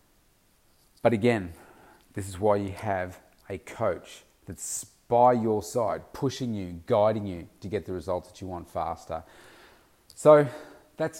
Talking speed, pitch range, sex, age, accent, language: 145 wpm, 90-115 Hz, male, 30-49, Australian, English